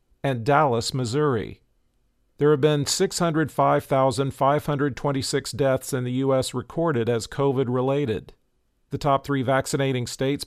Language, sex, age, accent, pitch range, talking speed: English, male, 50-69, American, 125-145 Hz, 110 wpm